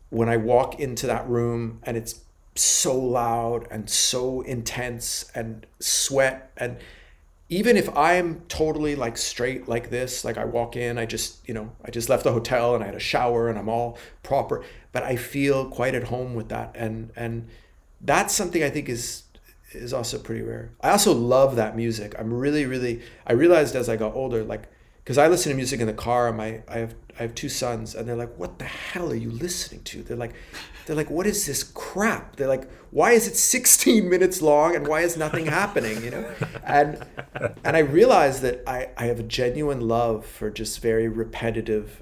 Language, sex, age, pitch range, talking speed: English, male, 30-49, 110-135 Hz, 205 wpm